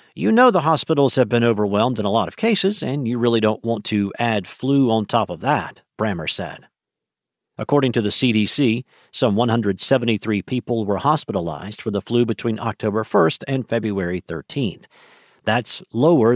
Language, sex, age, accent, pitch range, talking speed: English, male, 50-69, American, 110-140 Hz, 170 wpm